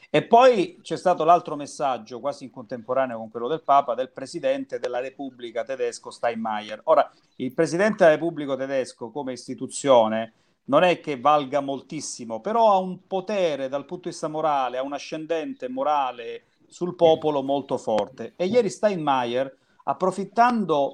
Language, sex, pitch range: Italian, male, 130-180 Hz